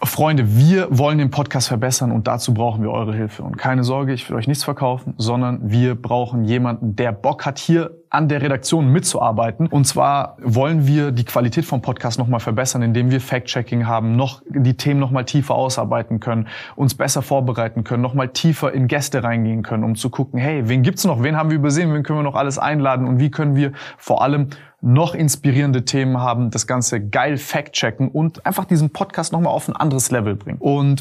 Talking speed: 205 wpm